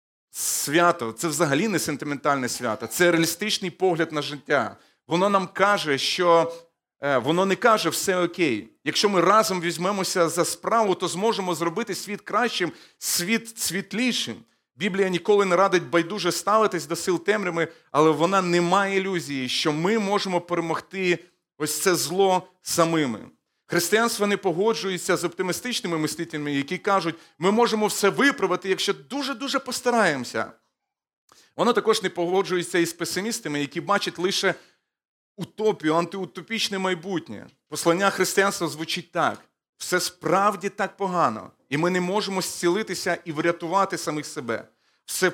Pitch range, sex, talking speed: 165-195 Hz, male, 135 wpm